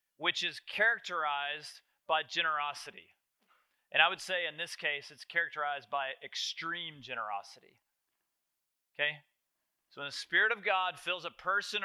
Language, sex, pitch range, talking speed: English, male, 150-195 Hz, 135 wpm